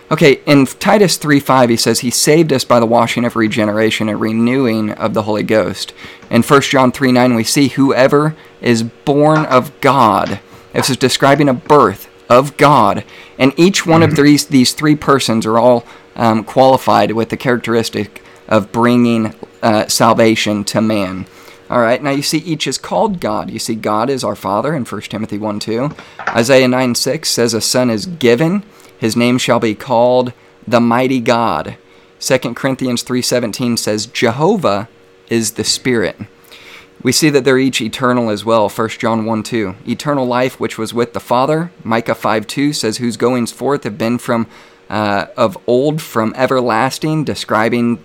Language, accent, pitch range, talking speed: English, American, 110-130 Hz, 165 wpm